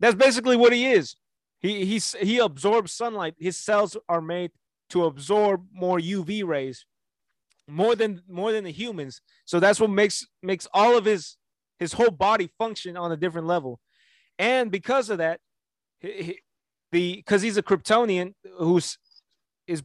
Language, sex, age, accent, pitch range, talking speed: English, male, 30-49, American, 170-220 Hz, 160 wpm